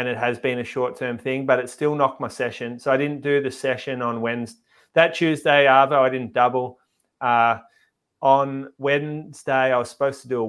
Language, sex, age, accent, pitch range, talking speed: English, male, 30-49, Australian, 115-135 Hz, 205 wpm